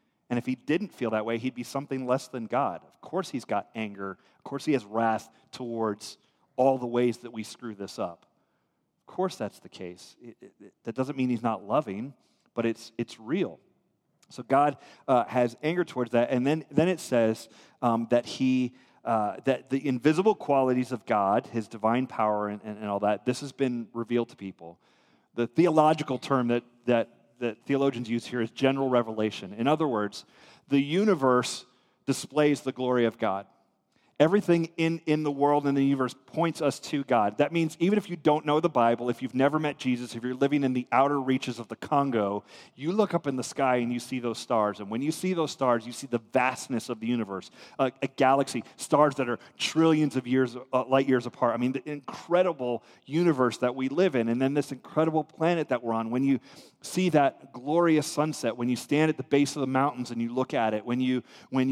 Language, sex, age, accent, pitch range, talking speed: English, male, 30-49, American, 115-145 Hz, 210 wpm